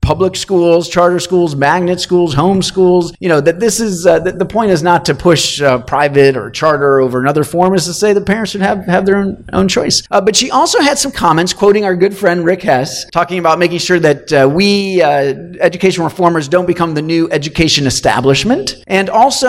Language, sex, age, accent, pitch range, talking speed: English, male, 30-49, American, 135-185 Hz, 210 wpm